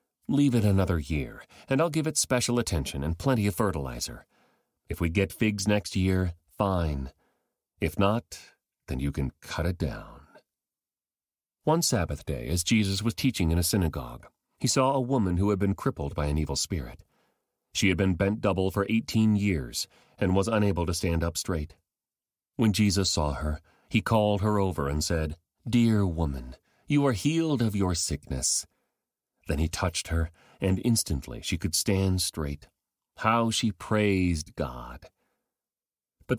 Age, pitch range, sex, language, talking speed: 40-59, 80-115 Hz, male, English, 165 wpm